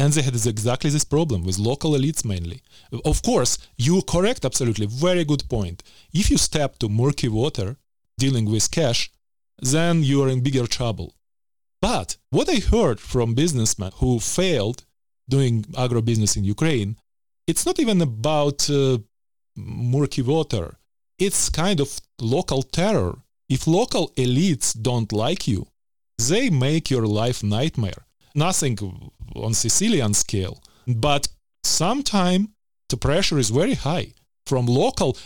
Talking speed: 140 wpm